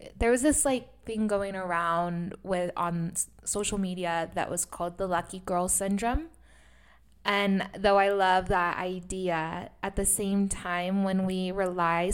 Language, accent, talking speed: English, American, 155 wpm